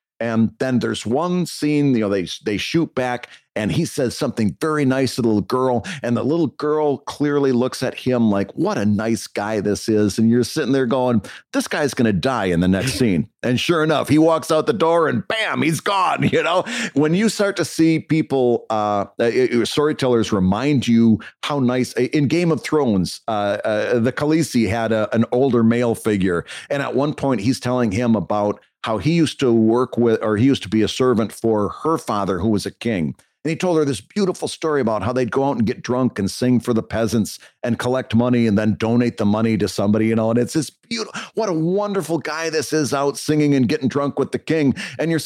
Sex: male